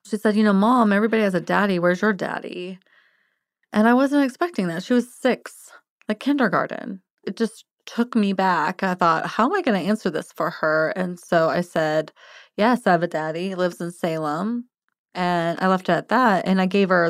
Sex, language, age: female, English, 20-39